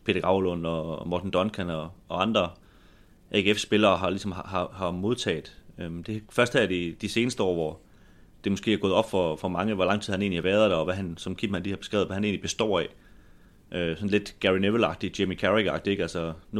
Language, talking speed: Danish, 230 wpm